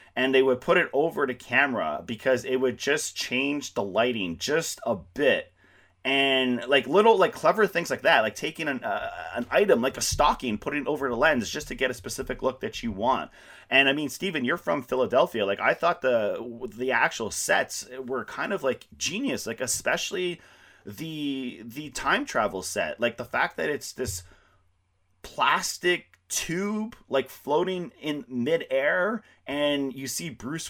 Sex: male